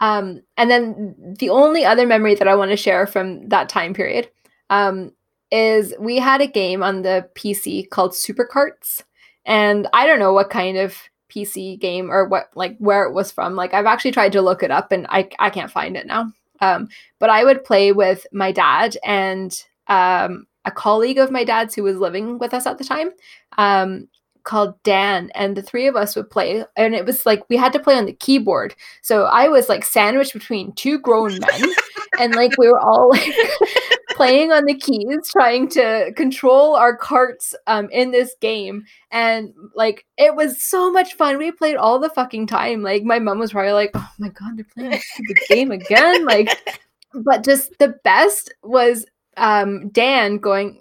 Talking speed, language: 195 wpm, English